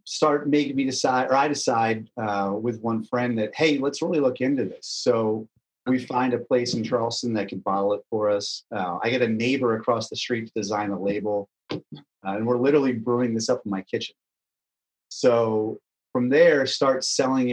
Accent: American